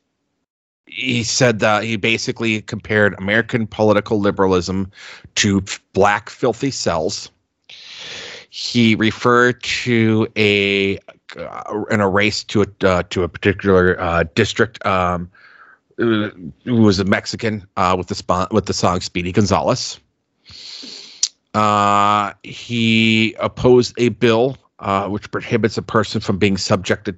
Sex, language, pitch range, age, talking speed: male, English, 100-115 Hz, 30-49, 120 wpm